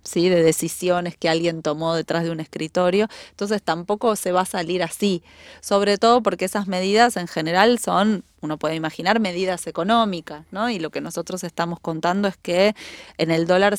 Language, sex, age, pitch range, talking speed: Spanish, female, 20-39, 165-200 Hz, 185 wpm